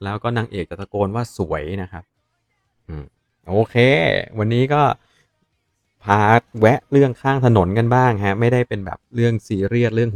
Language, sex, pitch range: Thai, male, 85-115 Hz